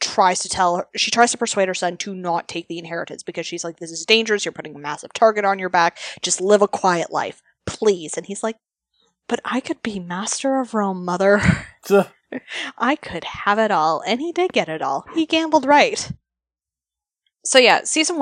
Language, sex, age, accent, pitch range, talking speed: English, female, 10-29, American, 180-240 Hz, 210 wpm